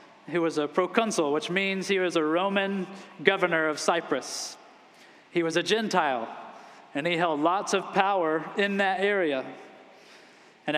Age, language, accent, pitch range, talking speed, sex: 20-39, English, American, 170-215 Hz, 150 wpm, male